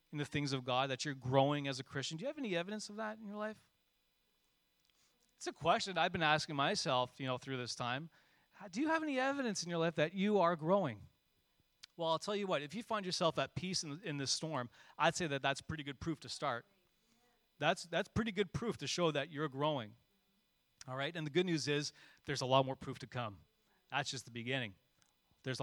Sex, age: male, 30-49